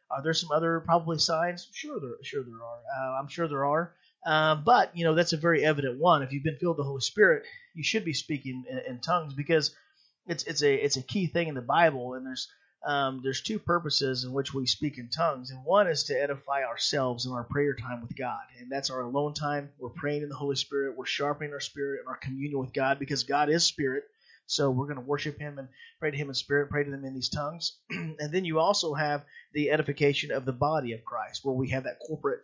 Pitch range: 135-160 Hz